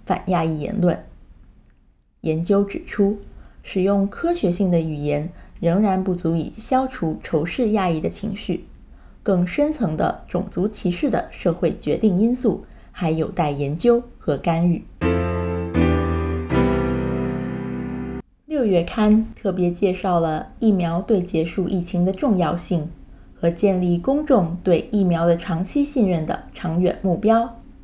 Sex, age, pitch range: female, 20-39, 170-215 Hz